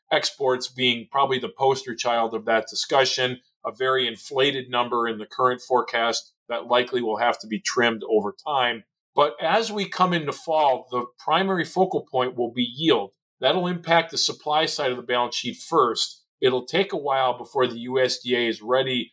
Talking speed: 180 wpm